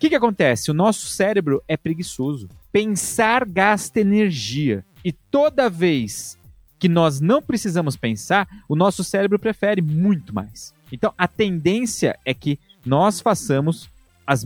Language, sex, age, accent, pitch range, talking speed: Portuguese, male, 30-49, Brazilian, 140-210 Hz, 140 wpm